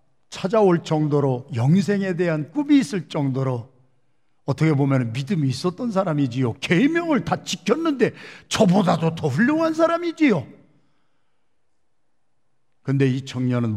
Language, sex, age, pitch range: Korean, male, 50-69, 125-185 Hz